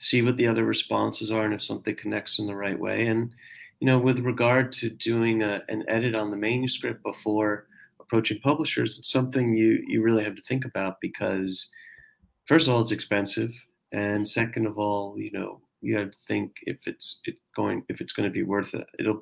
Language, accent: English, American